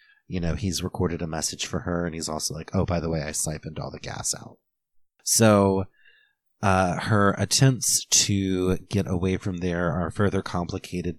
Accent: American